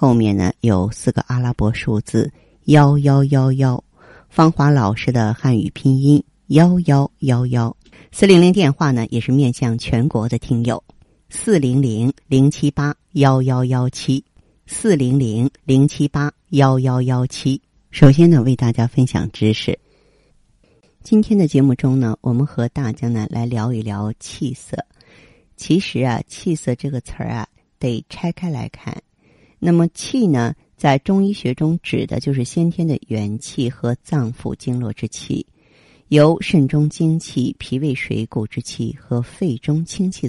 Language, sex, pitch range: Chinese, female, 120-155 Hz